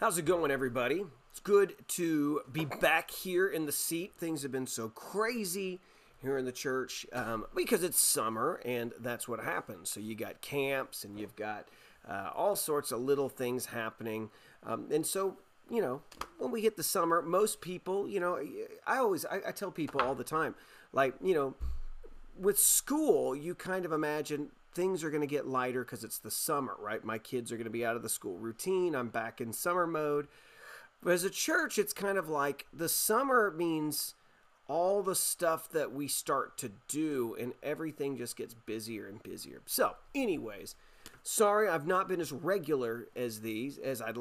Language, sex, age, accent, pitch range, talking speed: English, male, 30-49, American, 125-180 Hz, 190 wpm